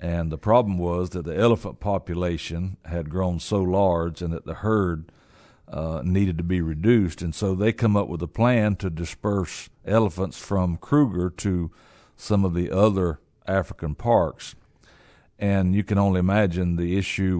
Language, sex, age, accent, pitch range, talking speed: English, male, 60-79, American, 85-100 Hz, 165 wpm